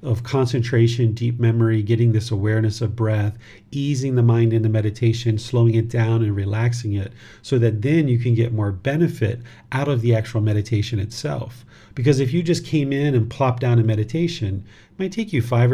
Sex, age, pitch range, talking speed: male, 40-59, 110-130 Hz, 195 wpm